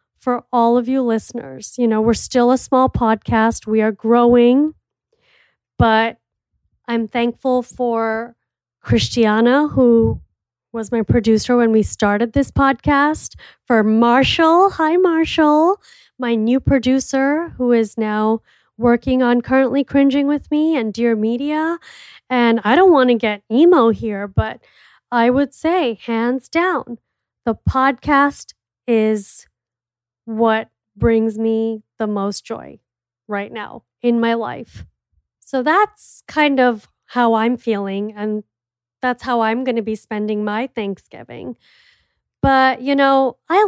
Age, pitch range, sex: 30-49, 220-270 Hz, female